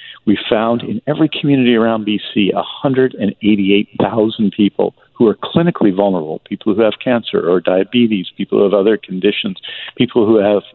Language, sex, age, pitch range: English, male, 50-69, 100-120 Hz